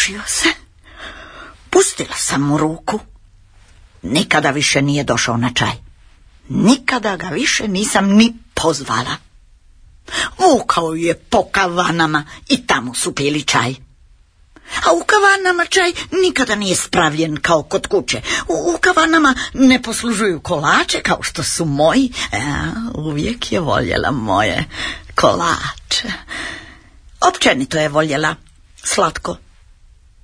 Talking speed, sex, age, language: 110 wpm, female, 50-69, Croatian